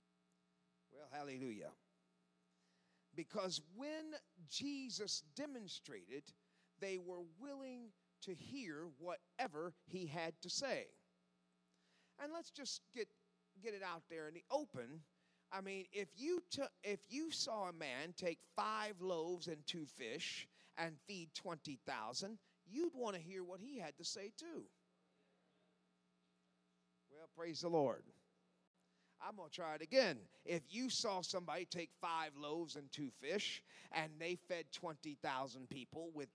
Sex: male